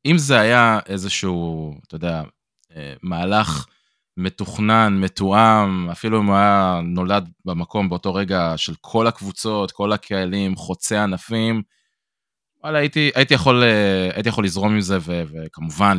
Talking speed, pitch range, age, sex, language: 120 wpm, 85-100 Hz, 20-39, male, Hebrew